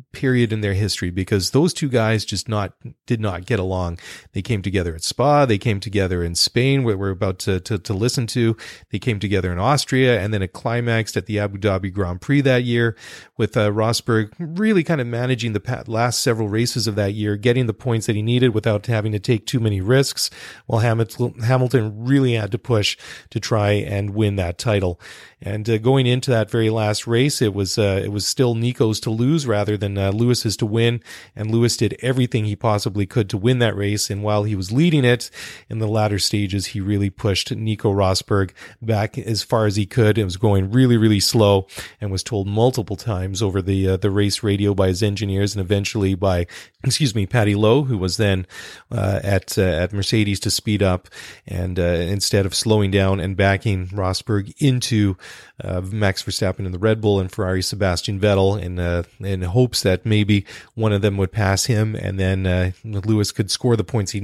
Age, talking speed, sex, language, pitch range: 40-59, 210 wpm, male, English, 100-115 Hz